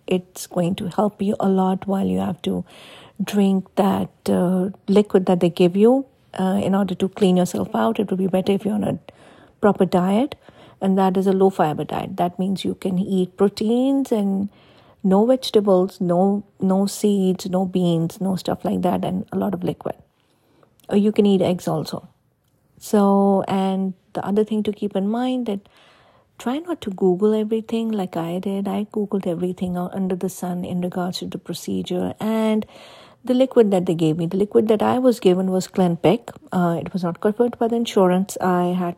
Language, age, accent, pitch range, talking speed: English, 50-69, Indian, 185-215 Hz, 190 wpm